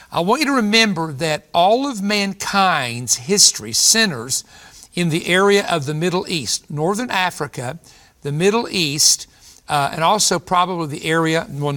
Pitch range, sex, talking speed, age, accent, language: 140-180 Hz, male, 150 wpm, 60-79, American, English